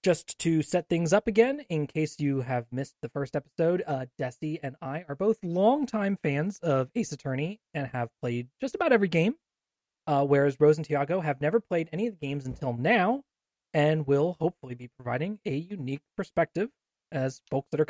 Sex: male